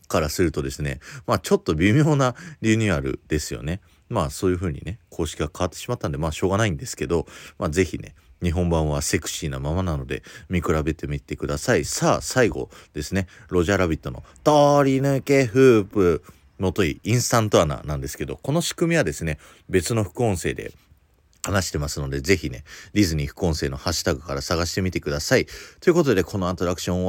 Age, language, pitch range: 30-49, Japanese, 75-100 Hz